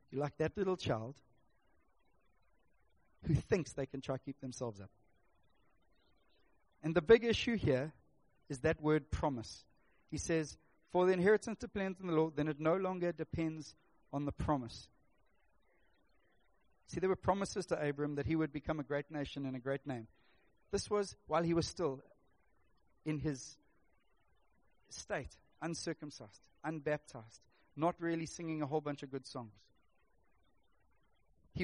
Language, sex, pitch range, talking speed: English, male, 145-205 Hz, 150 wpm